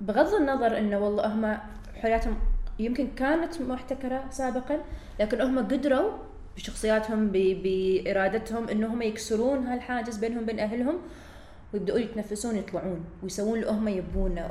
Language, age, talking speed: Arabic, 20-39, 110 wpm